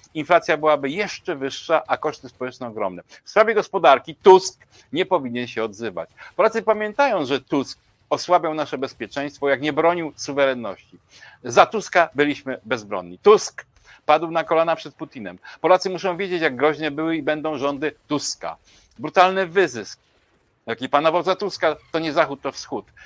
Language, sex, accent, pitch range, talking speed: Polish, male, native, 130-170 Hz, 150 wpm